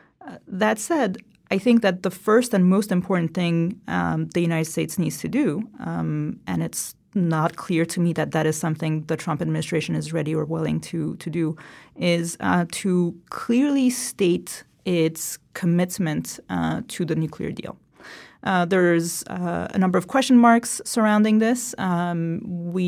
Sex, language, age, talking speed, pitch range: female, English, 30-49, 165 wpm, 165-205 Hz